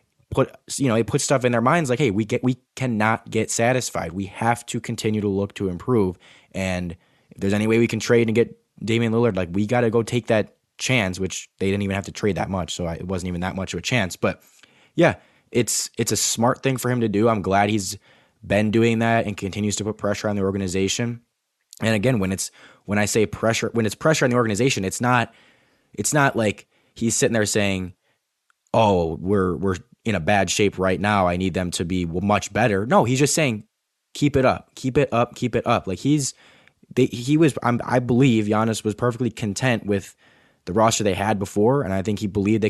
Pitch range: 95-115 Hz